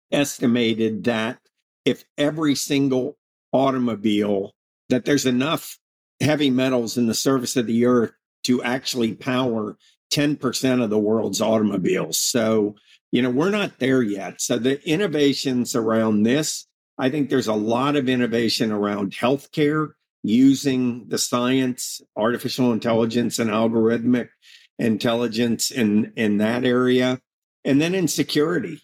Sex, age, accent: male, 50-69, American